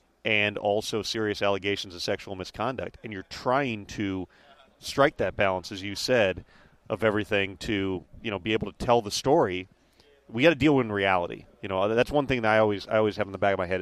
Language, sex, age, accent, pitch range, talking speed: English, male, 40-59, American, 100-135 Hz, 220 wpm